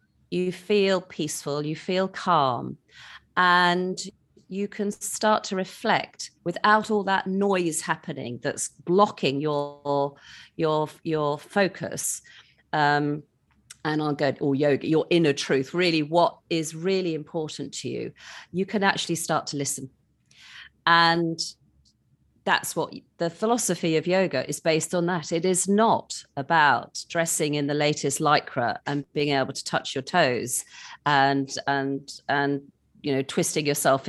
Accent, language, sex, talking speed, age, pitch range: British, English, female, 140 wpm, 40-59, 140-175 Hz